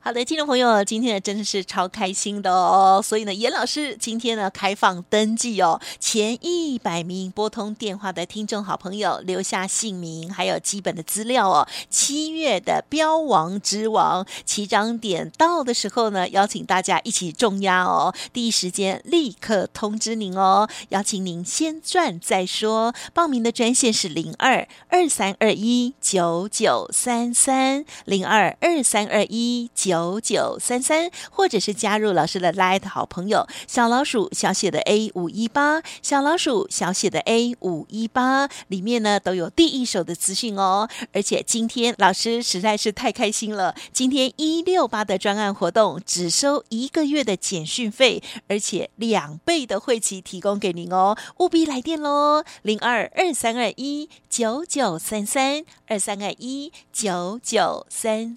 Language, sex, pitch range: Chinese, female, 195-255 Hz